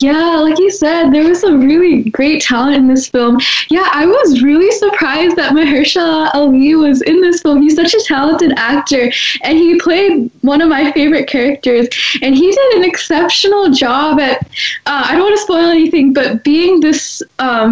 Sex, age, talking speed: female, 10-29, 190 wpm